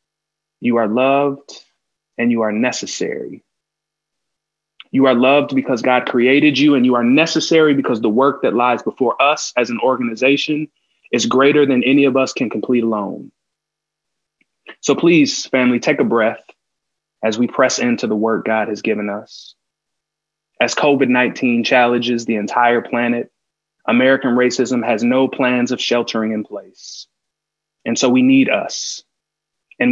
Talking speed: 150 wpm